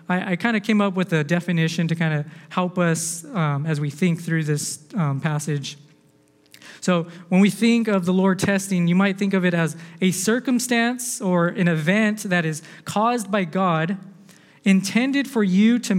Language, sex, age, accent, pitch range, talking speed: English, male, 20-39, American, 165-205 Hz, 185 wpm